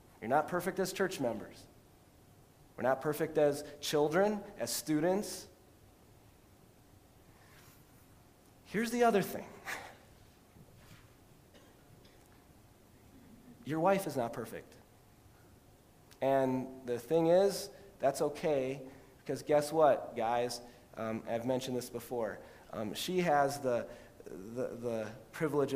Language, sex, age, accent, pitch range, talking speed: English, male, 30-49, American, 120-190 Hz, 100 wpm